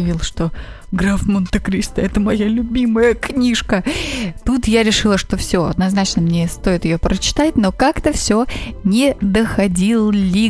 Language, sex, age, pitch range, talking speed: Russian, female, 20-39, 190-260 Hz, 130 wpm